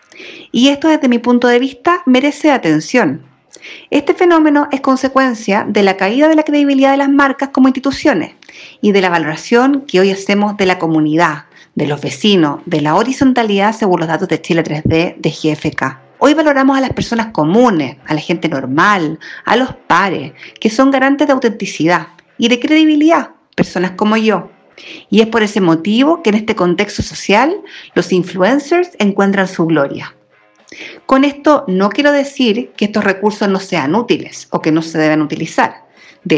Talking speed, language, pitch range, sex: 175 wpm, Spanish, 180-275 Hz, female